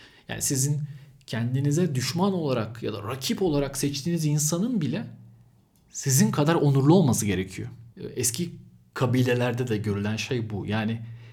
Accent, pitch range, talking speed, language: native, 115-150 Hz, 125 wpm, Turkish